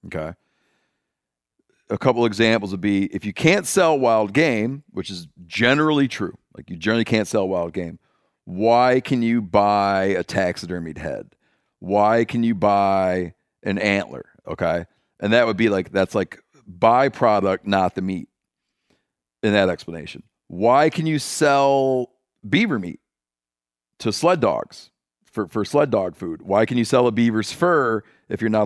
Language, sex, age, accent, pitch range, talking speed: English, male, 40-59, American, 95-120 Hz, 160 wpm